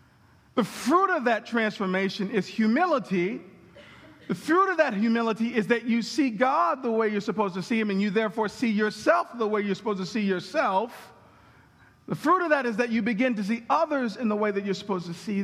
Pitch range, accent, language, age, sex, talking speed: 180-240 Hz, American, English, 50-69, male, 215 wpm